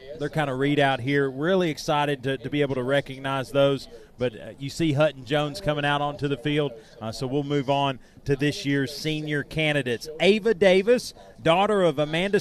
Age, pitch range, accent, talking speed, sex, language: 30-49, 140-185 Hz, American, 200 wpm, male, English